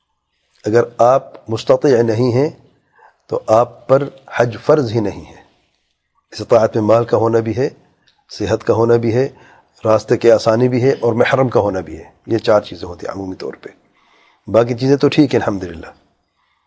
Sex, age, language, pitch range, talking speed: male, 40-59, English, 115-135 Hz, 180 wpm